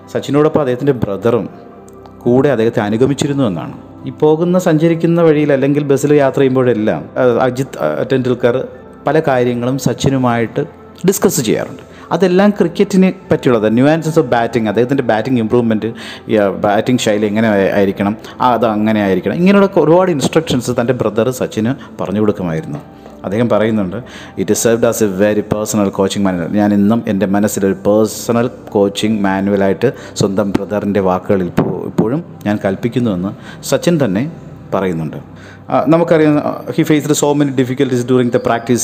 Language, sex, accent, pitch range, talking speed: Malayalam, male, native, 110-145 Hz, 130 wpm